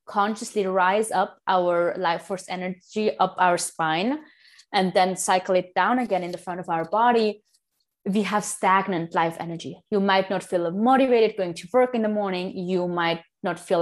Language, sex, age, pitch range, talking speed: English, female, 20-39, 180-210 Hz, 180 wpm